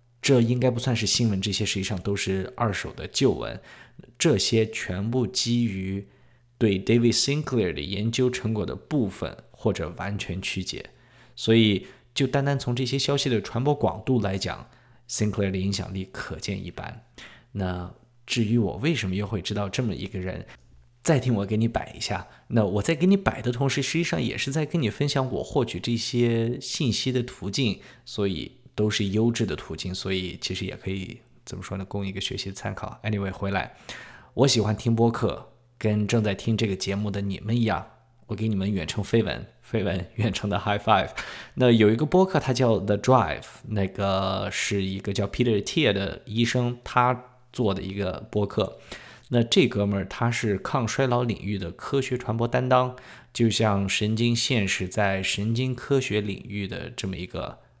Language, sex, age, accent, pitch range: English, male, 20-39, Chinese, 100-125 Hz